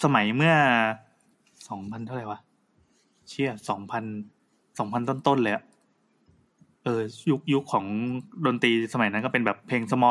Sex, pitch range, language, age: male, 125-160 Hz, Thai, 20-39